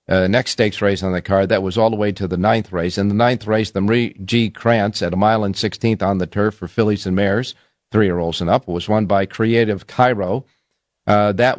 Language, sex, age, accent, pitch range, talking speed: English, male, 50-69, American, 95-115 Hz, 250 wpm